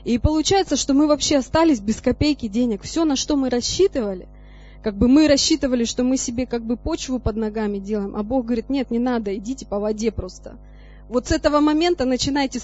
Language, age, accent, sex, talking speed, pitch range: Russian, 20-39, native, female, 200 wpm, 235-295 Hz